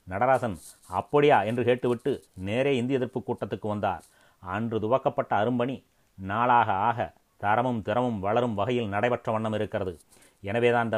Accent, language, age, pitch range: native, Tamil, 30-49, 110-125 Hz